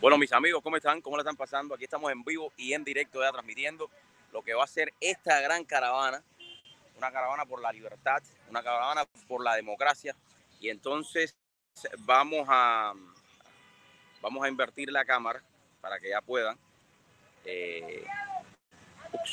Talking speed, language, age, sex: 150 wpm, English, 30-49, male